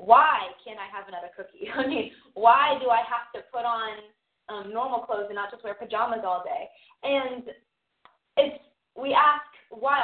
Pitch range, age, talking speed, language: 215-280 Hz, 20-39, 180 wpm, English